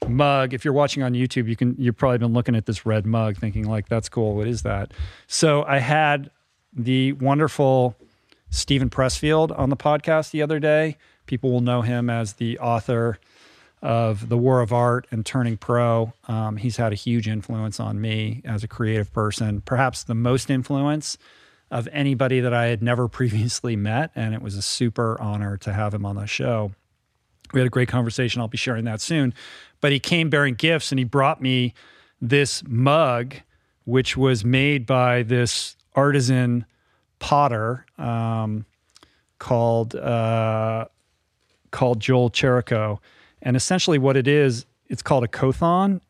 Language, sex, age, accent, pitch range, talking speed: English, male, 40-59, American, 115-135 Hz, 170 wpm